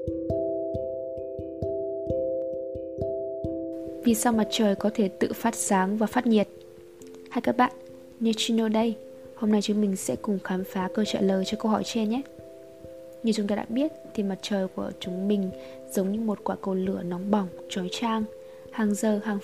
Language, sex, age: Vietnamese, female, 20-39